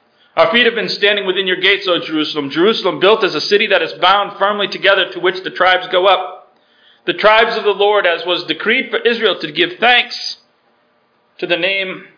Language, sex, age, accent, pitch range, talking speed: English, male, 40-59, American, 155-225 Hz, 205 wpm